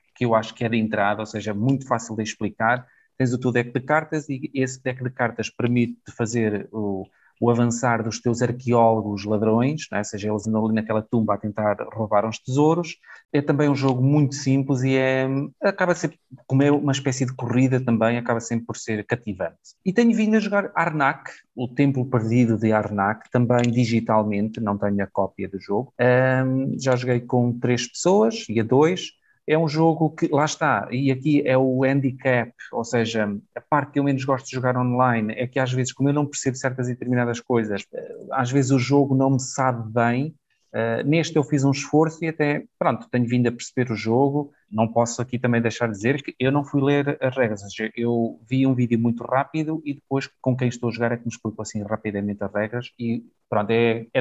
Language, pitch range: Portuguese, 115-135 Hz